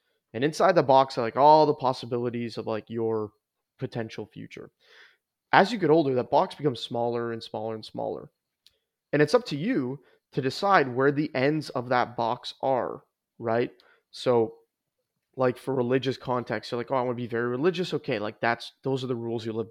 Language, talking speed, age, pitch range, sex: English, 195 wpm, 20-39, 115-135 Hz, male